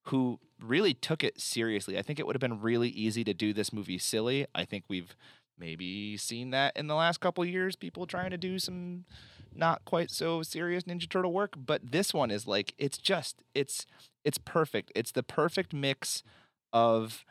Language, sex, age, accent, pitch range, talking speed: English, male, 30-49, American, 110-150 Hz, 200 wpm